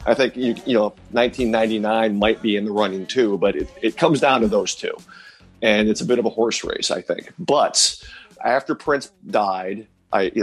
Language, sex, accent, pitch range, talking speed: English, male, American, 105-125 Hz, 205 wpm